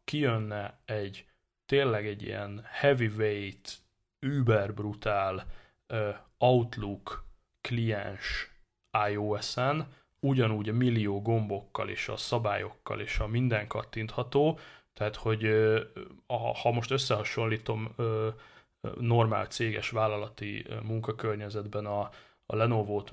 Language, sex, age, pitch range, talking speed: Hungarian, male, 20-39, 105-120 Hz, 95 wpm